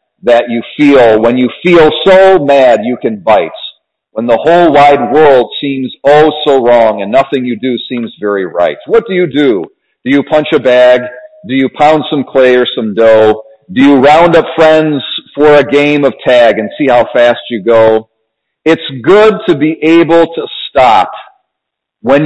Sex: male